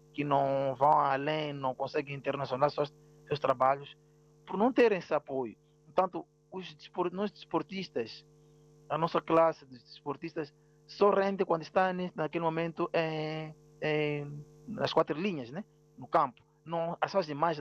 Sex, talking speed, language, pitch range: male, 130 wpm, Portuguese, 145-160 Hz